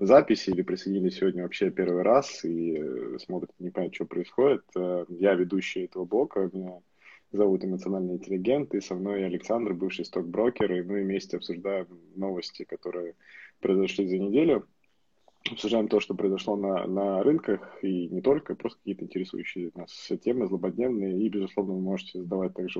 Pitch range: 90-100 Hz